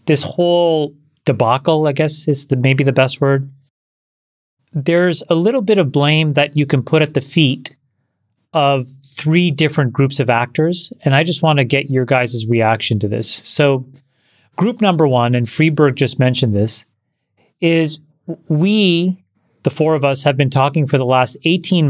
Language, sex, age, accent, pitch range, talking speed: English, male, 30-49, American, 125-155 Hz, 175 wpm